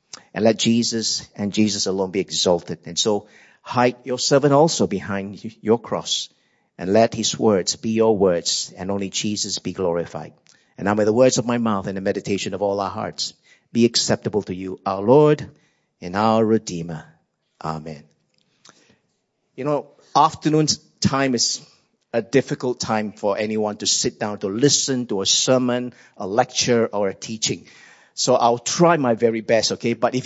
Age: 50-69